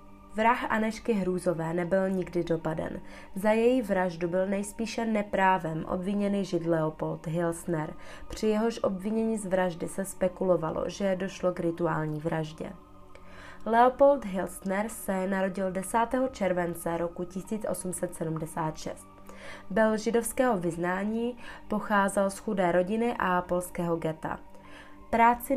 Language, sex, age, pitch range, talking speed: Czech, female, 20-39, 170-210 Hz, 110 wpm